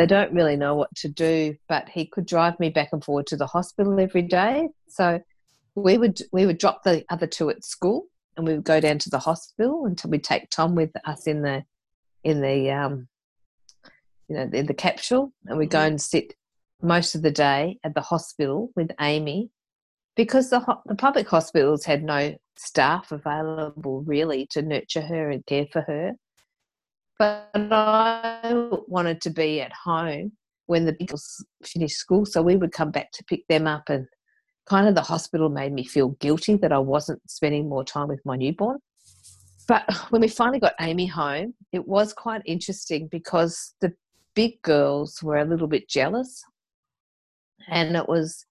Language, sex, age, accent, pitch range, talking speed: English, female, 50-69, Australian, 150-195 Hz, 185 wpm